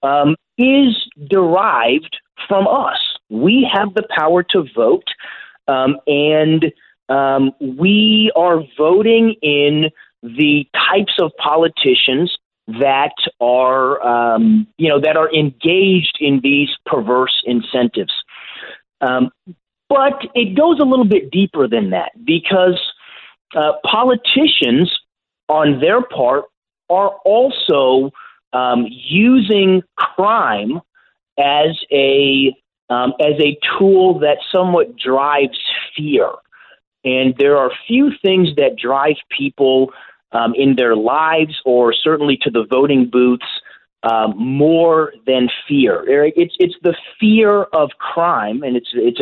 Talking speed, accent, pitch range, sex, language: 115 wpm, American, 135-205 Hz, male, English